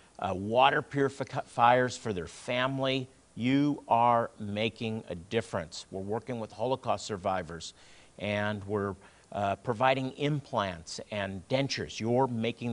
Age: 50-69